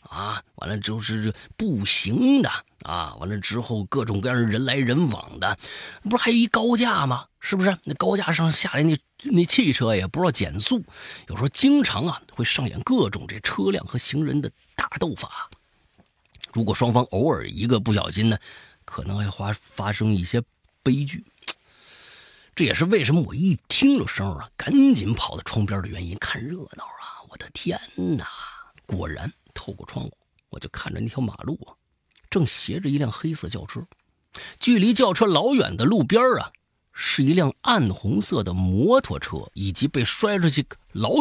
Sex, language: male, Chinese